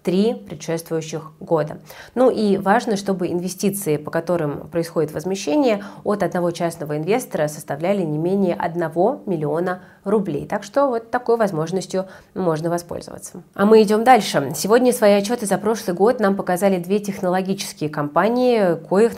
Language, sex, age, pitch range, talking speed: Russian, female, 30-49, 165-205 Hz, 140 wpm